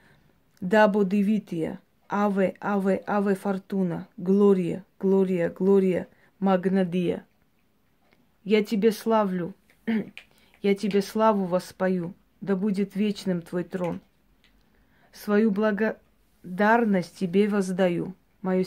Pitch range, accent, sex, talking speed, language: 185-205 Hz, native, female, 85 wpm, Russian